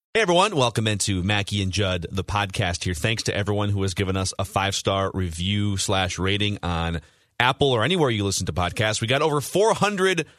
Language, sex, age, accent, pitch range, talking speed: English, male, 30-49, American, 100-145 Hz, 195 wpm